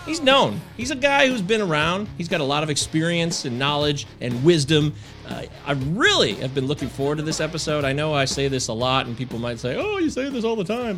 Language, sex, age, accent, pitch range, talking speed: English, male, 30-49, American, 125-185 Hz, 250 wpm